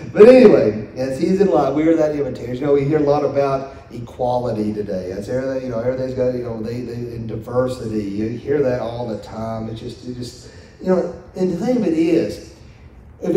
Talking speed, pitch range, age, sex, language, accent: 225 wpm, 110-145 Hz, 40-59, male, English, American